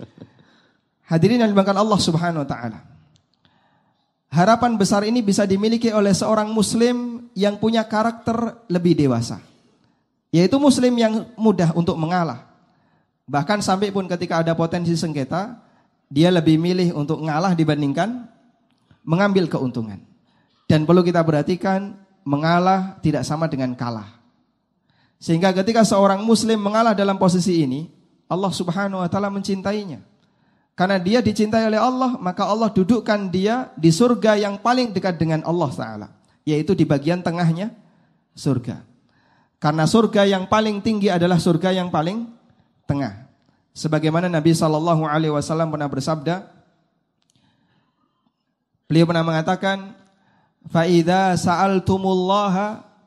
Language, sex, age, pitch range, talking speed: Indonesian, male, 20-39, 165-205 Hz, 120 wpm